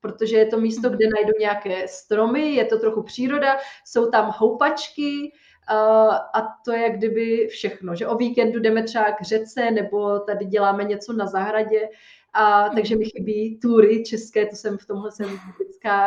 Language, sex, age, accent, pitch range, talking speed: Czech, female, 30-49, native, 210-240 Hz, 170 wpm